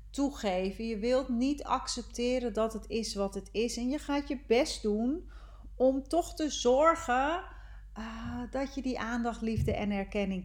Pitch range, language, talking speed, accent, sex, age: 200-255 Hz, Dutch, 165 wpm, Dutch, female, 40-59